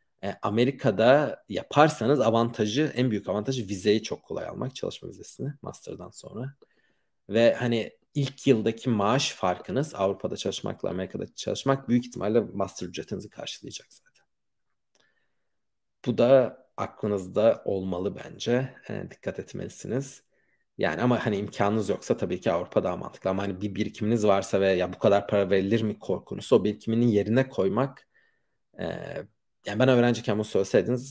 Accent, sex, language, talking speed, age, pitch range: native, male, Turkish, 135 wpm, 40-59, 100-125 Hz